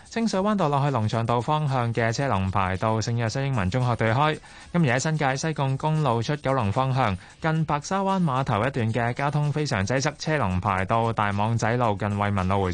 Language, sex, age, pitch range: Chinese, male, 20-39, 105-145 Hz